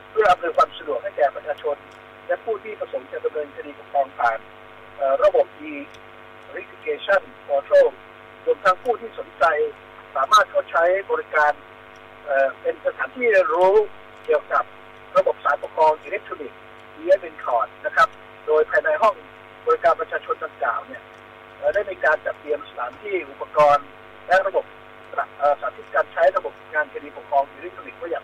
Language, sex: Thai, male